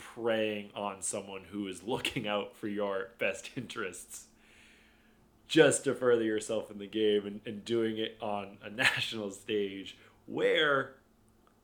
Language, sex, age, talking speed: English, male, 20-39, 140 wpm